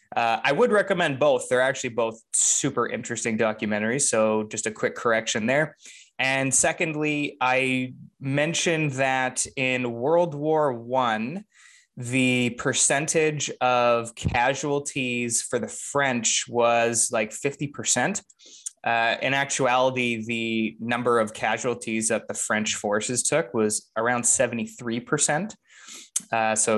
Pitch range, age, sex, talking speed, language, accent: 115-140 Hz, 20-39, male, 120 wpm, English, American